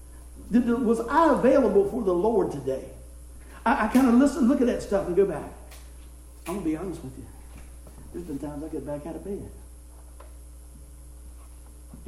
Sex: male